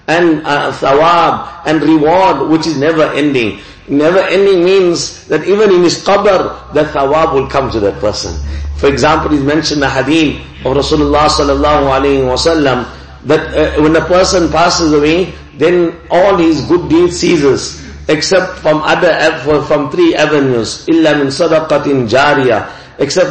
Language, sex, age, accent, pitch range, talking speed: English, male, 50-69, Indian, 145-175 Hz, 150 wpm